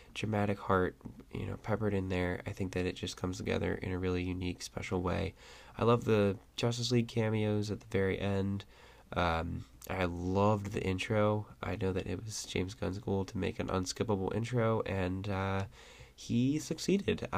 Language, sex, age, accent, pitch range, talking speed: English, male, 10-29, American, 95-115 Hz, 180 wpm